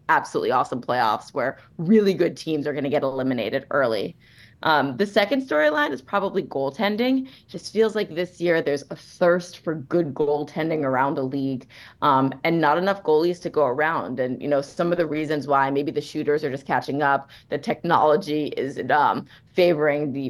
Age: 20-39